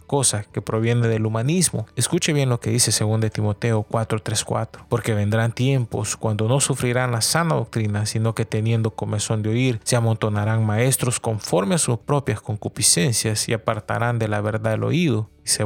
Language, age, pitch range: English, 30-49, 110-125 Hz